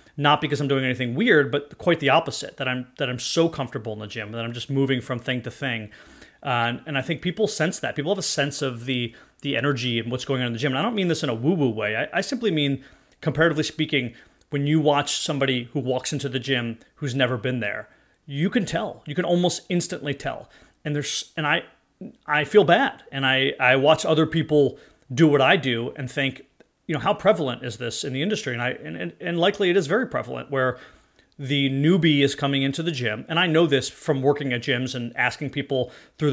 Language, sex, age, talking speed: English, male, 30-49, 235 wpm